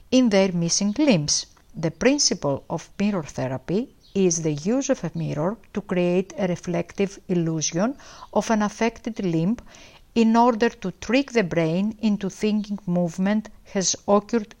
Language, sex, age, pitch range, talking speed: English, female, 50-69, 170-230 Hz, 145 wpm